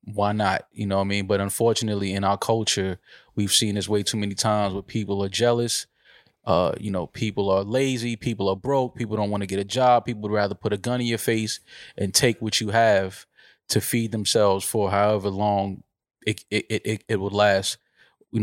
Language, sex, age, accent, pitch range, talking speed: English, male, 20-39, American, 100-110 Hz, 220 wpm